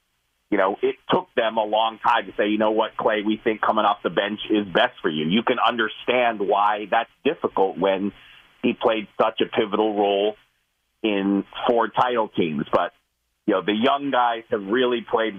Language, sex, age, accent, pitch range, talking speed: English, male, 40-59, American, 100-125 Hz, 195 wpm